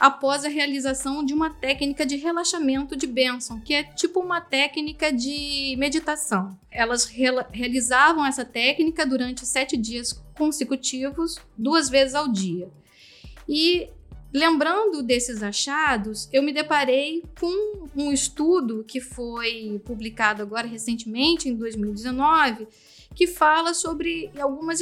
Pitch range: 245-320 Hz